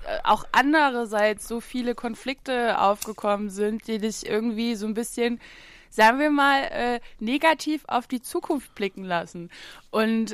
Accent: German